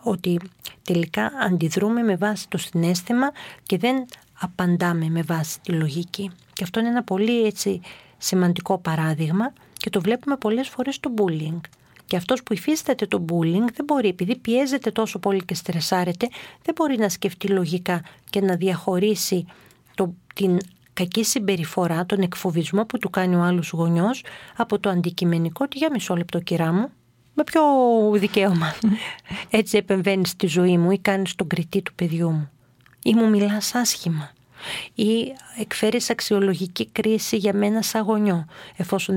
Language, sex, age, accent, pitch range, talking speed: Greek, female, 40-59, native, 175-220 Hz, 215 wpm